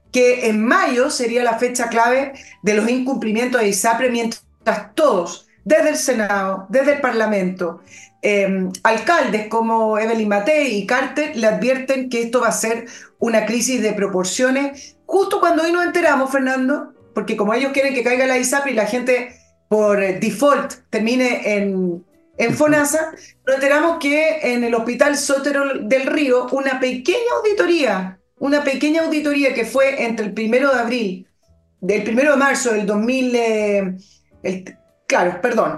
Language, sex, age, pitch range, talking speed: Spanish, female, 30-49, 210-275 Hz, 155 wpm